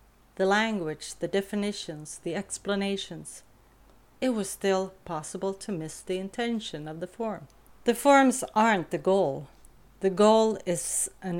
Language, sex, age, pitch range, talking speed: Swedish, female, 40-59, 165-210 Hz, 135 wpm